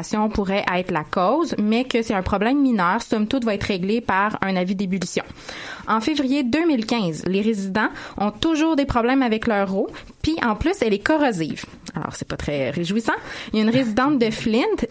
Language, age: French, 20-39